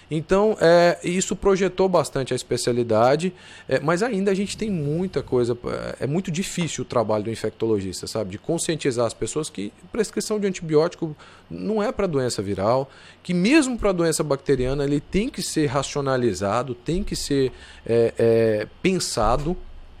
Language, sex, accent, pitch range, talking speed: Portuguese, male, Brazilian, 115-170 Hz, 145 wpm